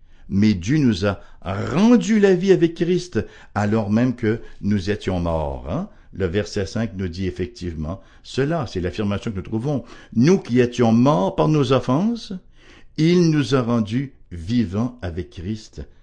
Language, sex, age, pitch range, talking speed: English, male, 60-79, 95-145 Hz, 155 wpm